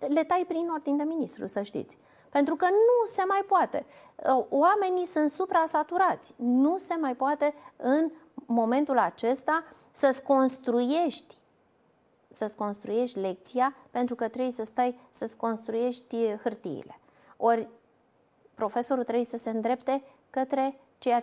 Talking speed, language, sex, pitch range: 125 wpm, Romanian, female, 230-290 Hz